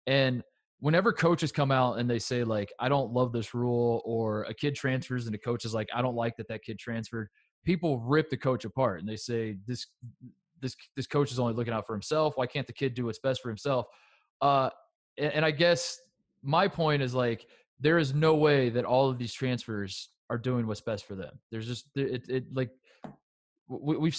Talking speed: 215 wpm